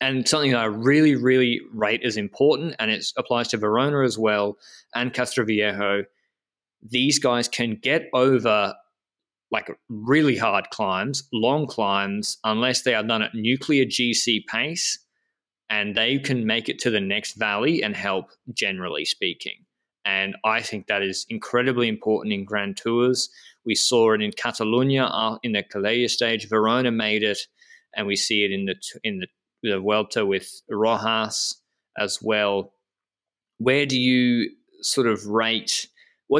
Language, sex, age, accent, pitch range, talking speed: English, male, 20-39, Australian, 105-125 Hz, 155 wpm